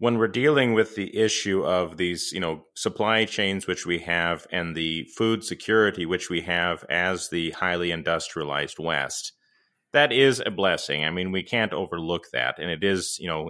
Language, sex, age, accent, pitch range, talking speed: English, male, 30-49, American, 90-115 Hz, 185 wpm